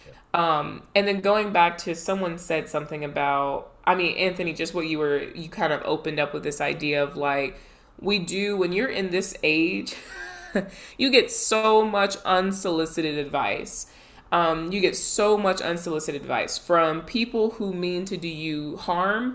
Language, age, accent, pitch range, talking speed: English, 20-39, American, 155-195 Hz, 170 wpm